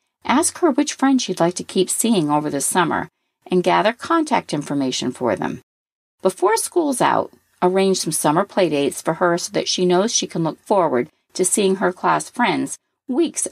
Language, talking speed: English, 180 wpm